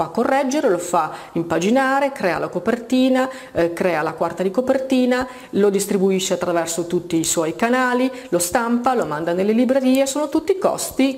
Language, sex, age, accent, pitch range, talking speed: Italian, female, 40-59, native, 175-260 Hz, 165 wpm